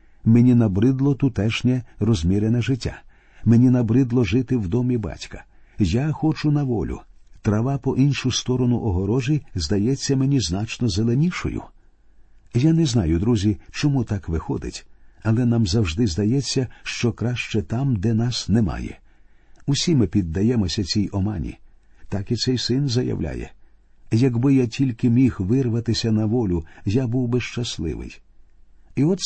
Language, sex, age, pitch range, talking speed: Ukrainian, male, 50-69, 105-130 Hz, 130 wpm